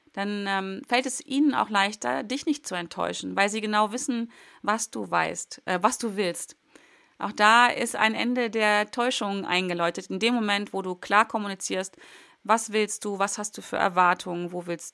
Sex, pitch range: female, 190-225 Hz